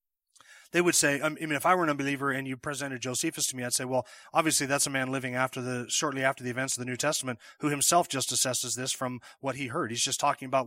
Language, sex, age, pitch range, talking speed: English, male, 30-49, 120-140 Hz, 265 wpm